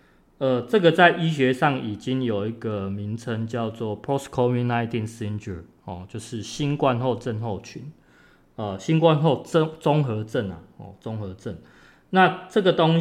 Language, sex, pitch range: Chinese, male, 105-140 Hz